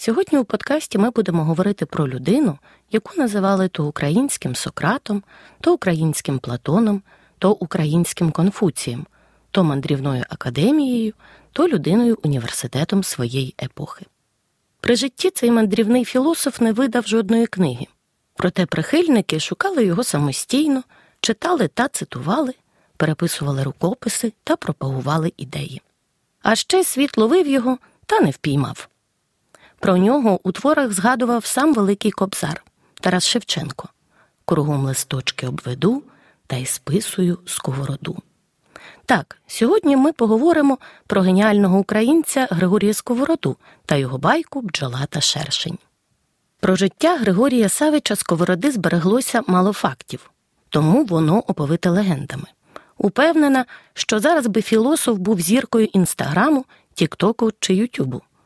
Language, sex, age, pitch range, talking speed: Ukrainian, female, 30-49, 160-245 Hz, 115 wpm